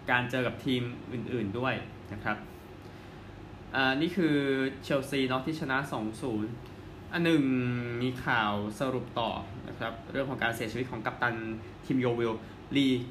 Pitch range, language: 110-135 Hz, Thai